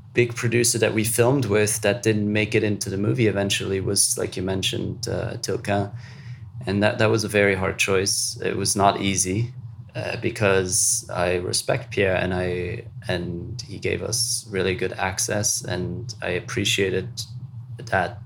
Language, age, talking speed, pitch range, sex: English, 30-49, 165 wpm, 100-120 Hz, male